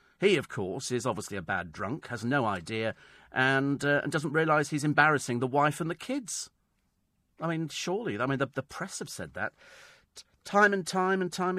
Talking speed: 205 wpm